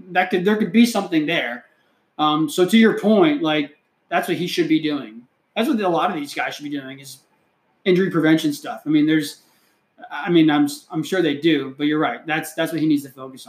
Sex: male